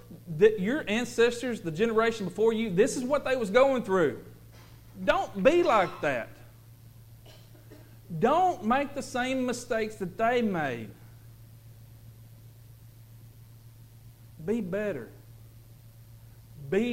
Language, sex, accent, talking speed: English, male, American, 105 wpm